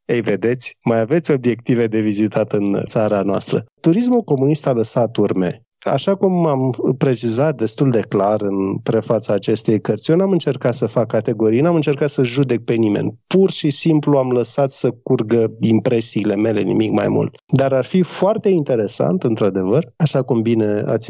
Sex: male